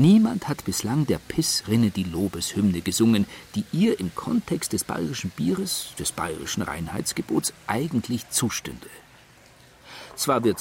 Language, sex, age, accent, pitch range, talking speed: German, male, 50-69, German, 100-150 Hz, 125 wpm